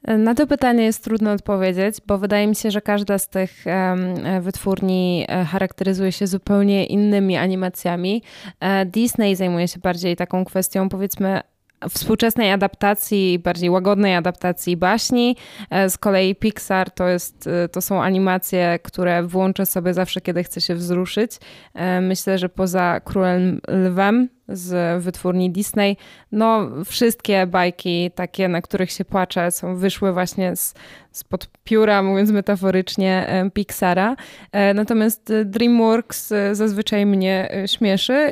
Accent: native